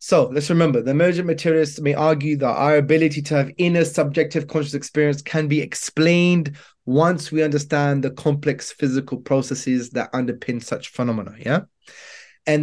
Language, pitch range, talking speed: English, 130-155 Hz, 155 wpm